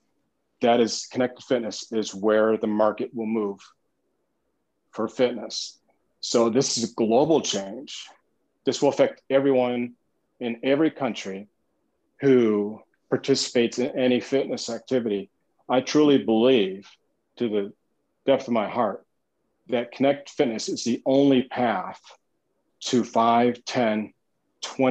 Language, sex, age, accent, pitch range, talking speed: Danish, male, 40-59, American, 110-130 Hz, 120 wpm